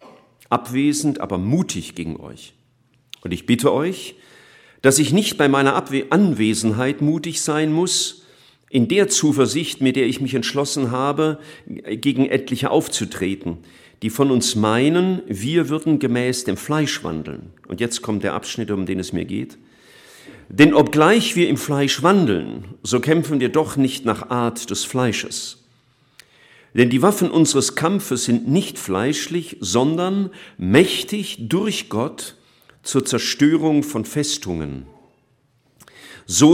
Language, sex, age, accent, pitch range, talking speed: German, male, 50-69, German, 110-155 Hz, 135 wpm